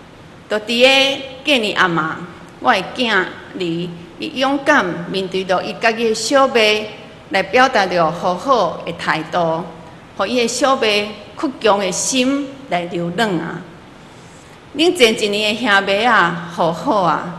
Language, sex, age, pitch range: Chinese, female, 40-59, 175-235 Hz